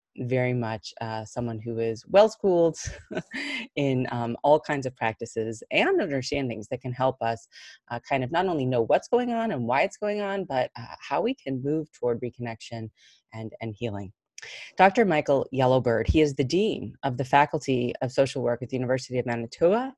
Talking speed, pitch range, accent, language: 185 wpm, 125-155 Hz, American, English